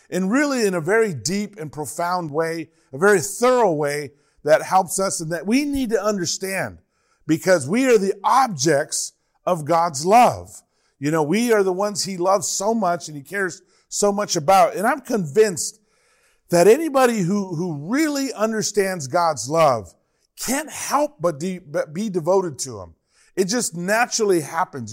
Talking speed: 165 wpm